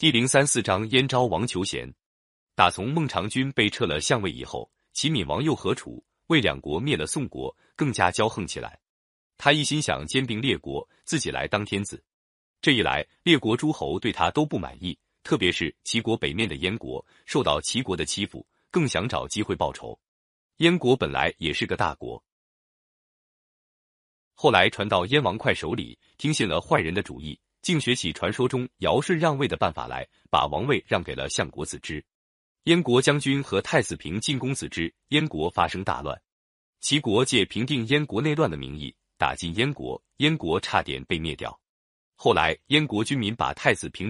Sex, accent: male, native